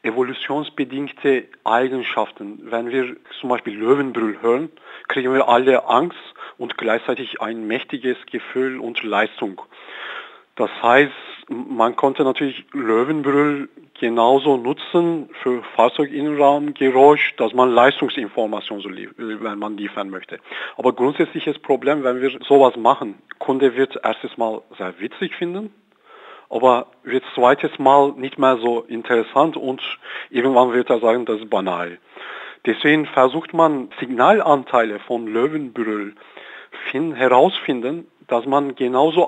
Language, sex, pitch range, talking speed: German, male, 120-145 Hz, 115 wpm